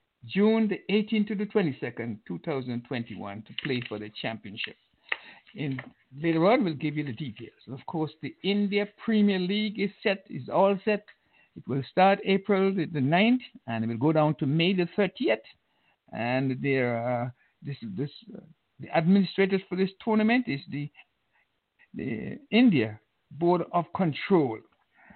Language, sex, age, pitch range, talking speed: English, male, 60-79, 135-205 Hz, 155 wpm